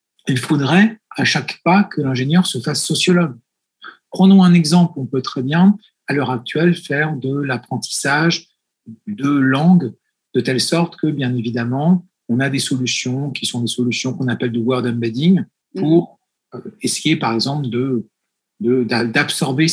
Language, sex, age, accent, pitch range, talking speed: French, male, 50-69, French, 130-175 Hz, 155 wpm